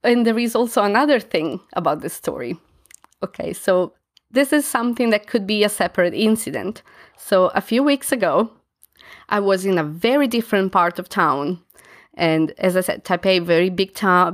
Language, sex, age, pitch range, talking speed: English, female, 20-39, 170-215 Hz, 175 wpm